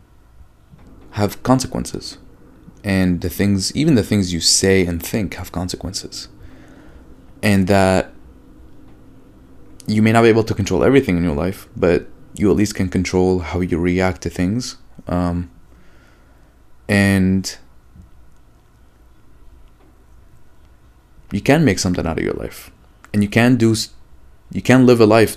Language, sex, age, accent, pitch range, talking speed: English, male, 20-39, Canadian, 85-105 Hz, 135 wpm